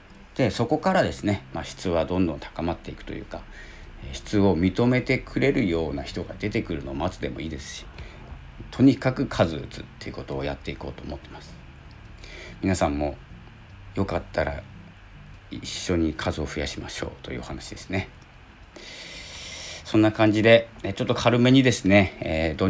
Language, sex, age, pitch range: Japanese, male, 40-59, 75-105 Hz